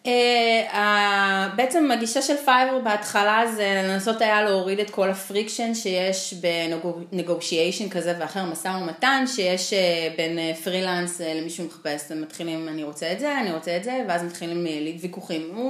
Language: Hebrew